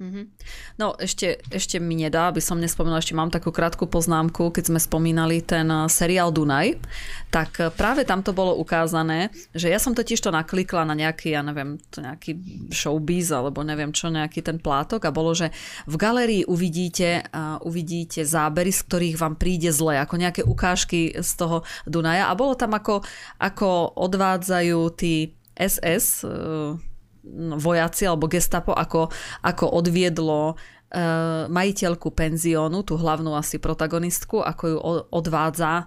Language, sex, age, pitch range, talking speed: Slovak, female, 20-39, 155-180 Hz, 145 wpm